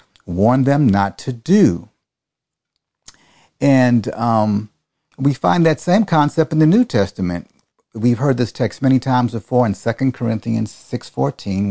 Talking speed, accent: 140 wpm, American